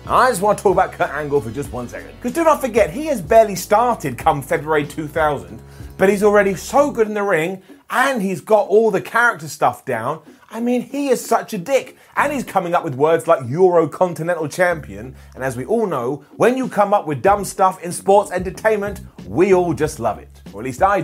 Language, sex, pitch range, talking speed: English, male, 165-230 Hz, 230 wpm